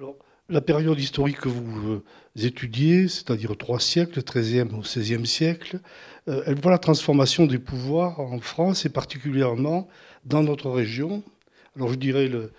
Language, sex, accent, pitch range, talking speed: French, male, French, 125-155 Hz, 140 wpm